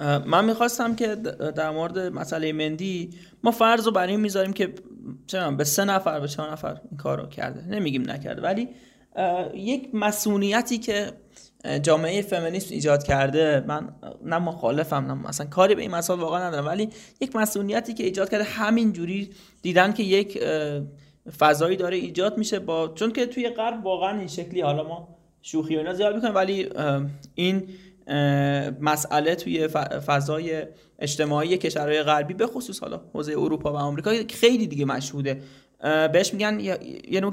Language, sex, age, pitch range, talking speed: Persian, male, 20-39, 155-210 Hz, 155 wpm